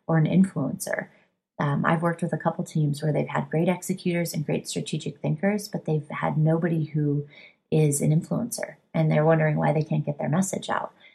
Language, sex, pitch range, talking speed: English, female, 150-190 Hz, 200 wpm